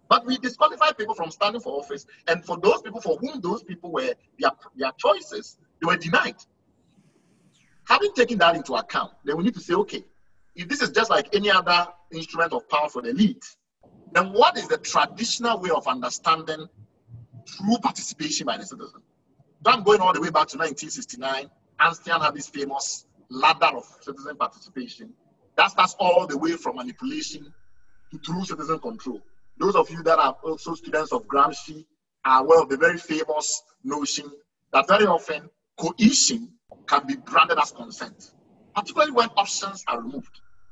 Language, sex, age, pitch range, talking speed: English, male, 50-69, 160-235 Hz, 175 wpm